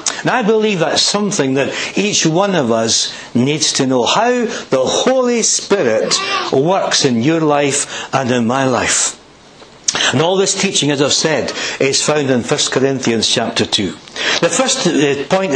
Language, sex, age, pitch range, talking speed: English, male, 60-79, 145-215 Hz, 160 wpm